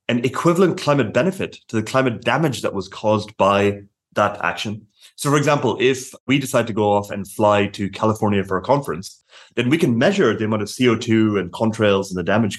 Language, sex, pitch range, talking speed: English, male, 100-130 Hz, 205 wpm